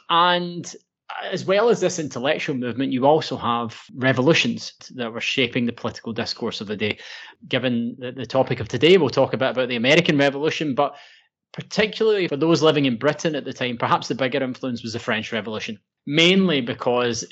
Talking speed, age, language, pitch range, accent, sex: 185 wpm, 20-39, English, 120-145 Hz, British, male